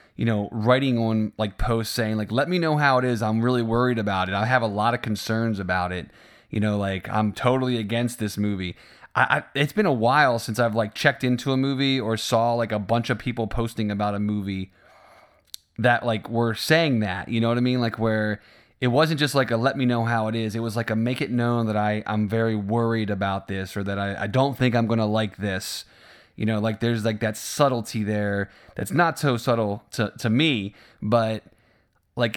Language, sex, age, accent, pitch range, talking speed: English, male, 20-39, American, 105-120 Hz, 230 wpm